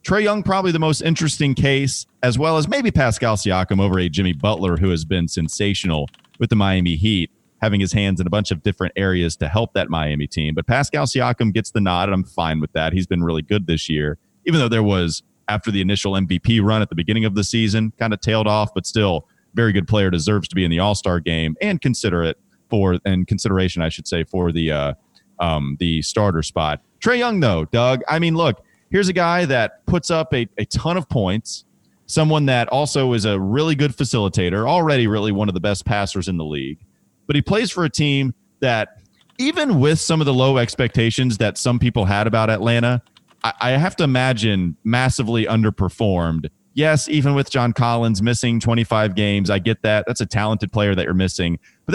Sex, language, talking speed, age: male, English, 215 wpm, 30-49